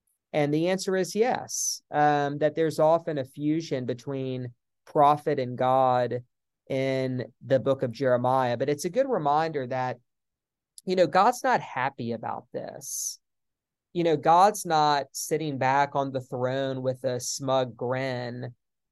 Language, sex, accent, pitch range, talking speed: English, male, American, 125-150 Hz, 145 wpm